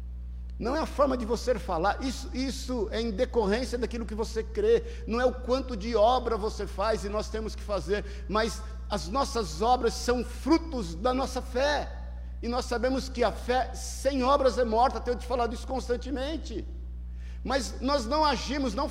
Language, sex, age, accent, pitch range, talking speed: Portuguese, male, 50-69, Brazilian, 205-275 Hz, 185 wpm